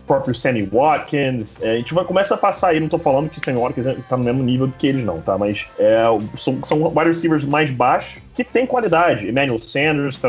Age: 20-39